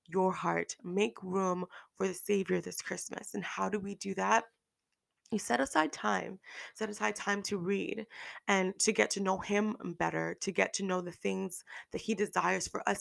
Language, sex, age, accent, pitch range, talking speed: English, female, 20-39, American, 175-210 Hz, 195 wpm